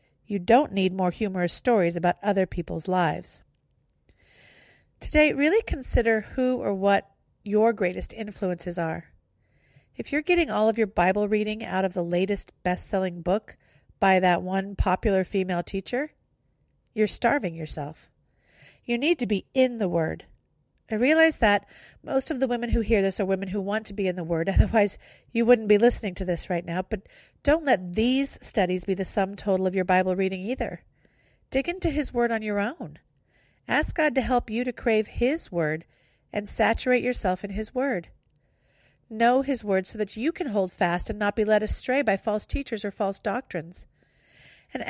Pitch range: 185-245 Hz